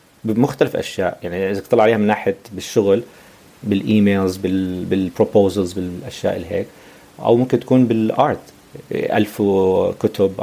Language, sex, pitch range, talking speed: Arabic, male, 95-120 Hz, 110 wpm